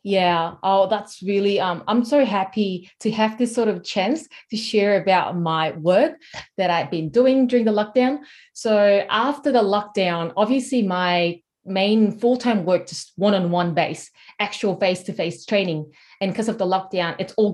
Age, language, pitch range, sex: 20-39, English, 175-215 Hz, female